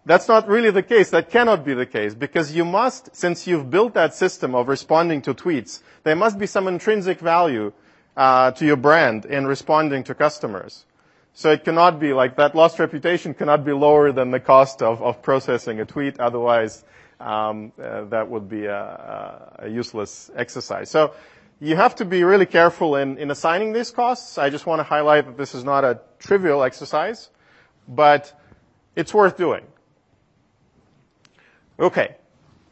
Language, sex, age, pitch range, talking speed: English, male, 40-59, 135-170 Hz, 170 wpm